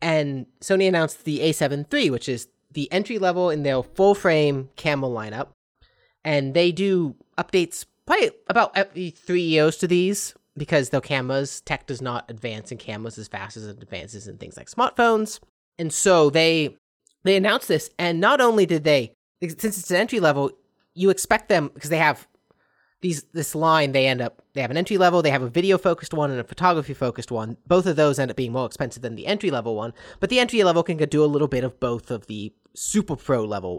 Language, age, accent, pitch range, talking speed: English, 30-49, American, 130-180 Hz, 195 wpm